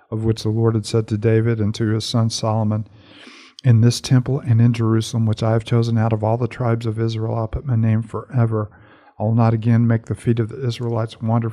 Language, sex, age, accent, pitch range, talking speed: English, male, 50-69, American, 110-120 Hz, 240 wpm